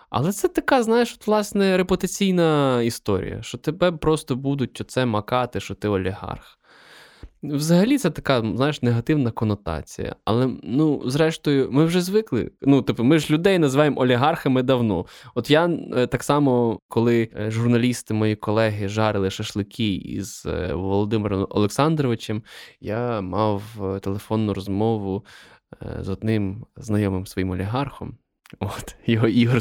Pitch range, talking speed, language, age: 110-155 Hz, 120 wpm, Ukrainian, 20-39